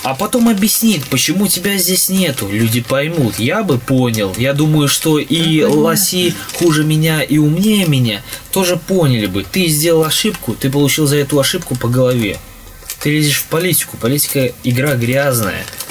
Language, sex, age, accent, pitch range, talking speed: Russian, male, 20-39, native, 115-155 Hz, 160 wpm